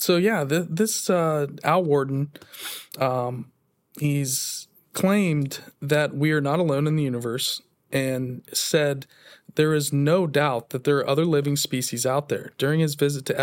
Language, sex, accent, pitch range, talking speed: English, male, American, 130-160 Hz, 150 wpm